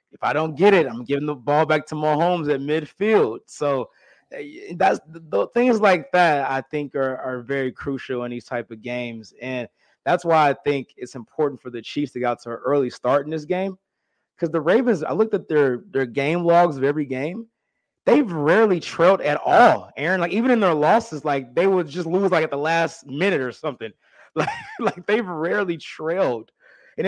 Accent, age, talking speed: American, 20-39, 210 wpm